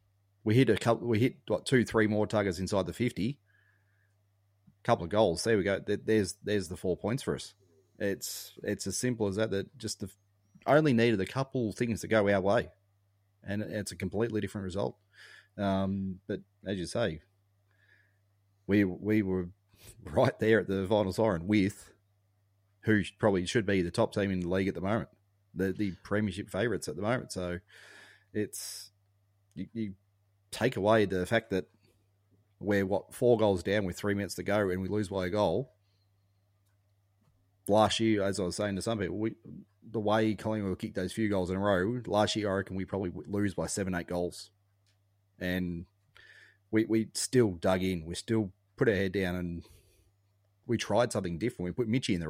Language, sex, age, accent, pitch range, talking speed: English, male, 30-49, Australian, 95-110 Hz, 190 wpm